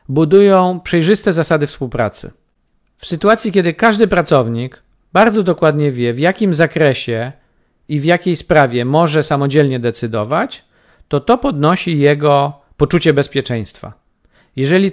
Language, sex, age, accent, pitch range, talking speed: Polish, male, 50-69, native, 140-185 Hz, 115 wpm